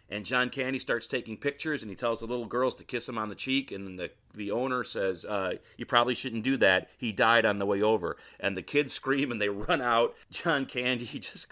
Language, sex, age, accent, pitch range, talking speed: English, male, 40-59, American, 100-130 Hz, 240 wpm